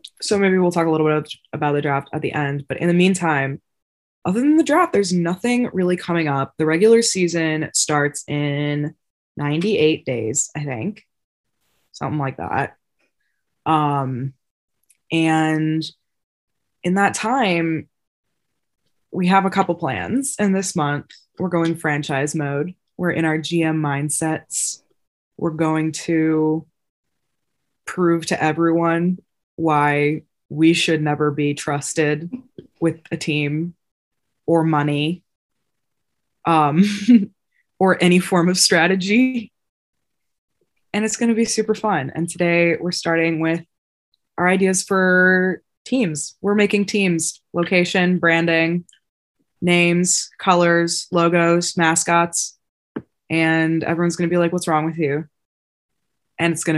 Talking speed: 130 wpm